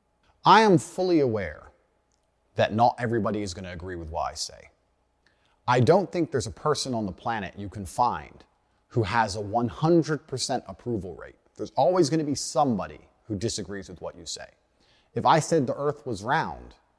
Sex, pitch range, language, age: male, 100-130 Hz, Swedish, 30-49